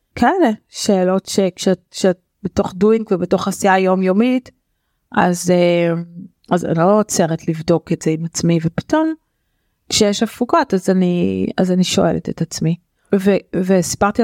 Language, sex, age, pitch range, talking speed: Hebrew, female, 30-49, 175-210 Hz, 130 wpm